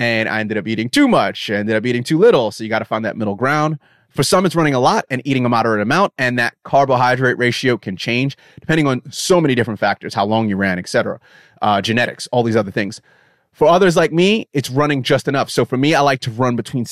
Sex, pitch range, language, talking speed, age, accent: male, 110-140 Hz, English, 255 wpm, 30-49, American